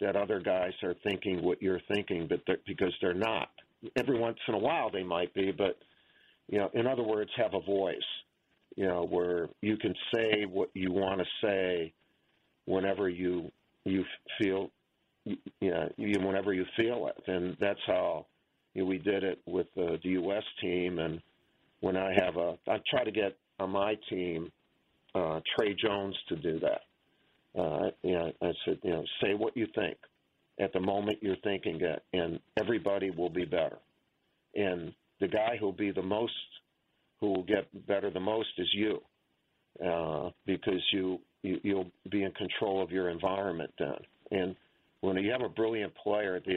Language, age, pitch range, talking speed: English, 50-69, 90-105 Hz, 185 wpm